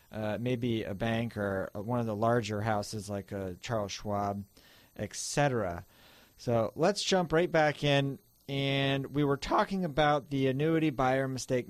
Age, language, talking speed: 40-59, English, 160 wpm